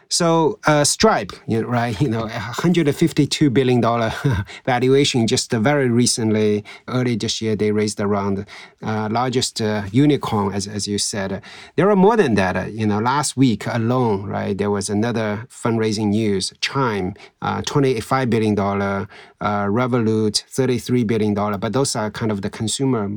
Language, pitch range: Chinese, 110-140 Hz